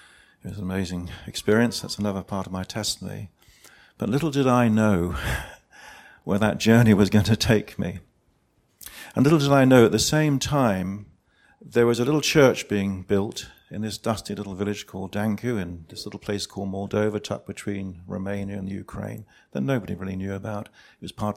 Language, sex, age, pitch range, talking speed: English, male, 50-69, 100-120 Hz, 185 wpm